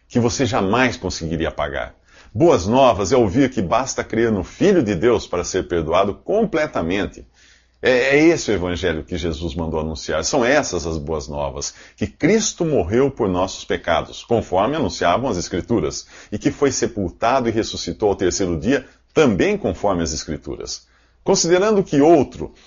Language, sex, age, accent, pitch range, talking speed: Portuguese, male, 50-69, Brazilian, 80-135 Hz, 160 wpm